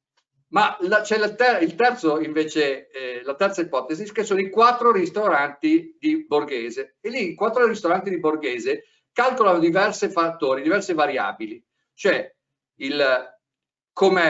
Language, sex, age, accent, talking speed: Italian, male, 50-69, native, 140 wpm